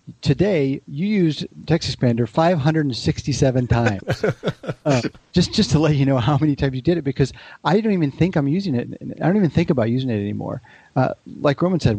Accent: American